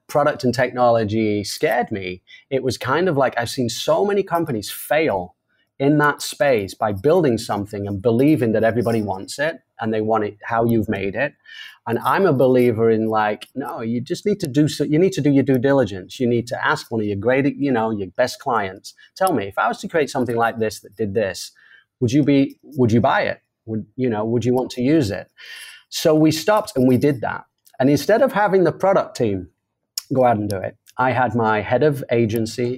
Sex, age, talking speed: male, 30-49, 225 wpm